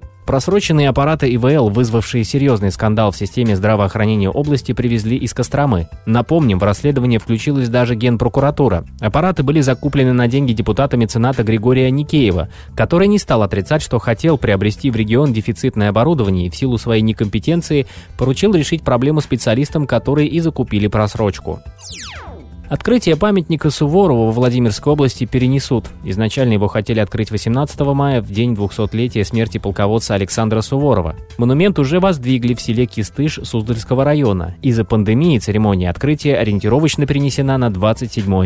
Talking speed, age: 135 wpm, 20-39